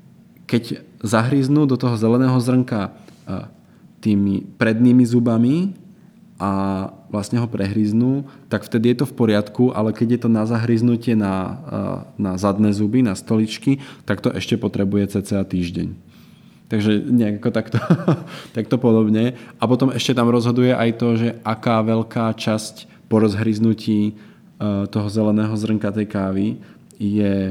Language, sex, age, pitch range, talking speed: Czech, male, 20-39, 105-120 Hz, 135 wpm